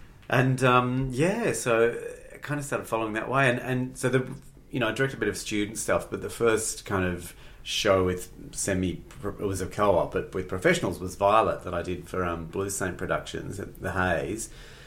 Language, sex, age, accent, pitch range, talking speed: English, male, 40-59, Australian, 90-125 Hz, 210 wpm